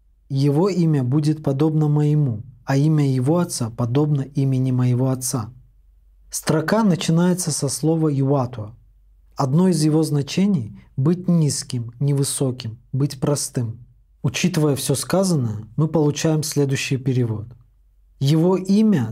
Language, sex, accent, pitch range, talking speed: Russian, male, native, 125-155 Hz, 115 wpm